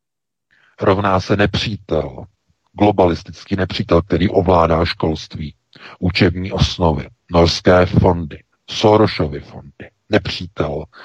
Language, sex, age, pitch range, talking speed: Czech, male, 50-69, 85-105 Hz, 80 wpm